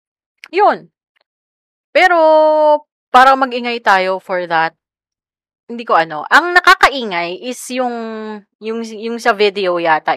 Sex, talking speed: female, 110 wpm